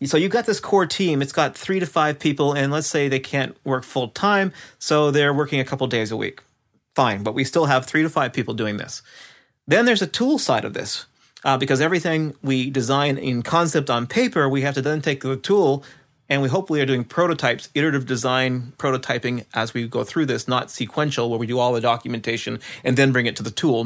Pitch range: 125-155 Hz